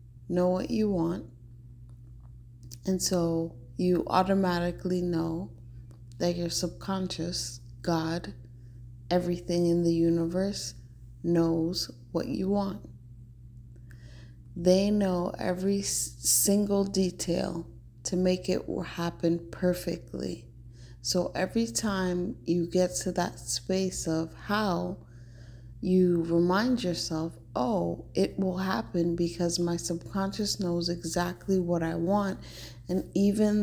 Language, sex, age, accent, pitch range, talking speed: English, female, 30-49, American, 120-180 Hz, 105 wpm